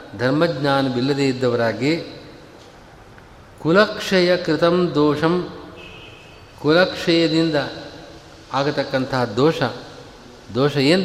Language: Kannada